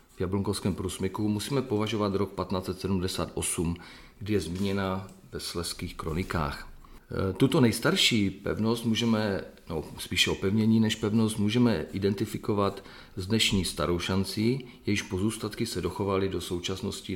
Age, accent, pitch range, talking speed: 40-59, native, 90-110 Hz, 110 wpm